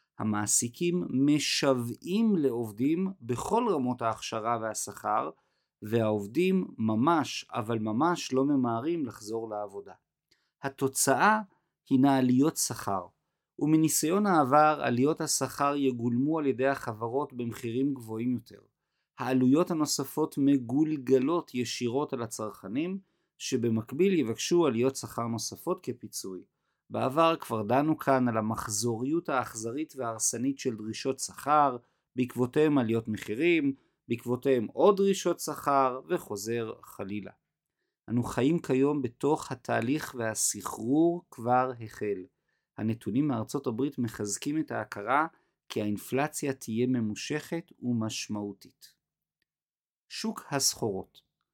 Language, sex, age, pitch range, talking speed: Hebrew, male, 50-69, 115-150 Hz, 95 wpm